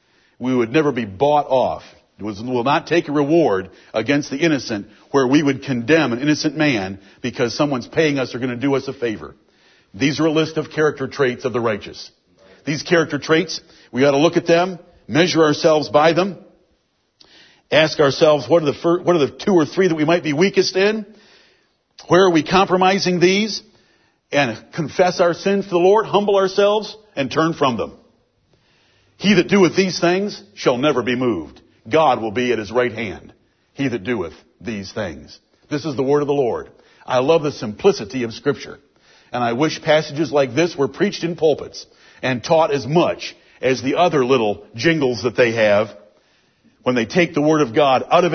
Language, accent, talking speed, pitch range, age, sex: English, American, 190 wpm, 130-175 Hz, 60-79, male